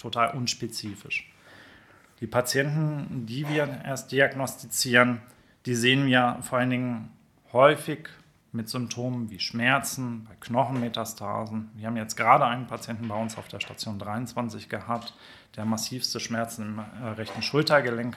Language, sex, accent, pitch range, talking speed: German, male, German, 110-130 Hz, 130 wpm